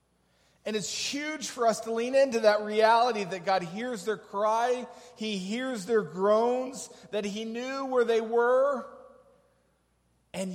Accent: American